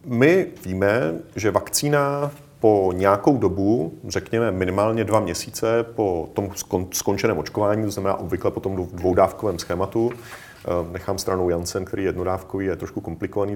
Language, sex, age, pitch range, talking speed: Czech, male, 40-59, 100-125 Hz, 135 wpm